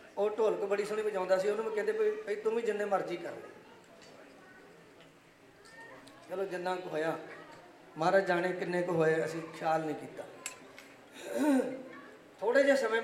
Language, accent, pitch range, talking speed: English, Indian, 180-220 Hz, 140 wpm